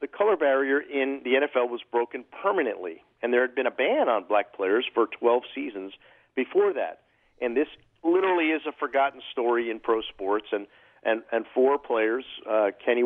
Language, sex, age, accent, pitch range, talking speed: English, male, 50-69, American, 110-135 Hz, 185 wpm